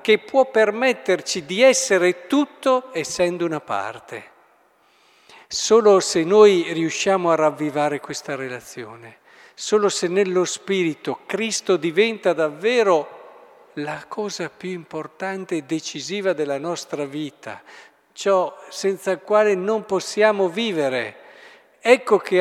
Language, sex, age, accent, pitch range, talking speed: Italian, male, 50-69, native, 155-210 Hz, 110 wpm